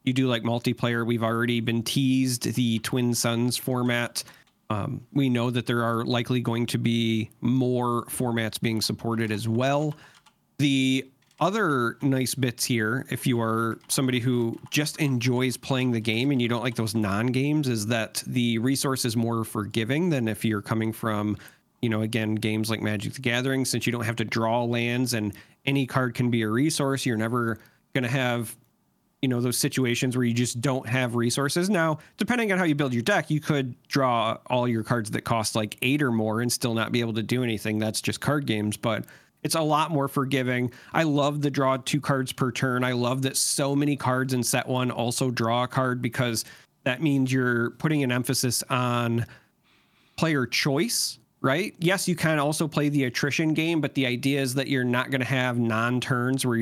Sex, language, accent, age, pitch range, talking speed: male, English, American, 40-59, 115-135 Hz, 200 wpm